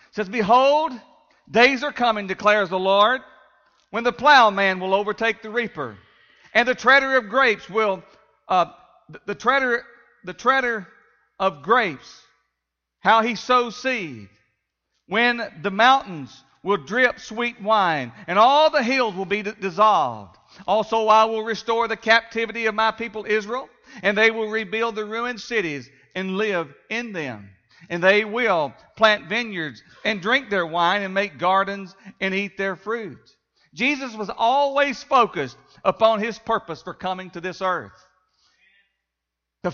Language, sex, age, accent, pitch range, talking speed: English, male, 50-69, American, 185-245 Hz, 150 wpm